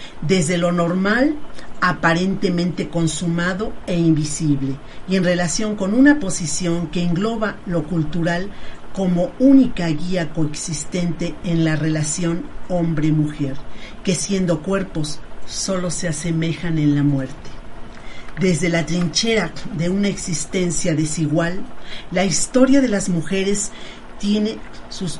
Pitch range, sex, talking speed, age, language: 155-190 Hz, female, 115 wpm, 40-59, Spanish